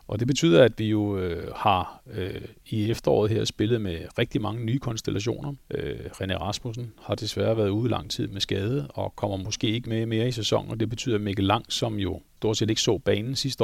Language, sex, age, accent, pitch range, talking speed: Danish, male, 40-59, native, 105-135 Hz, 225 wpm